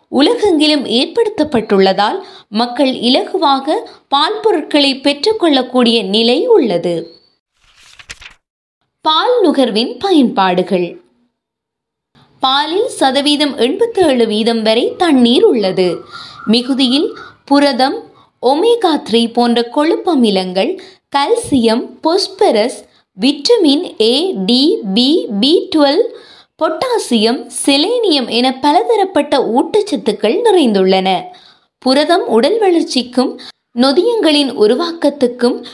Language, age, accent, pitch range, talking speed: Tamil, 20-39, native, 235-370 Hz, 65 wpm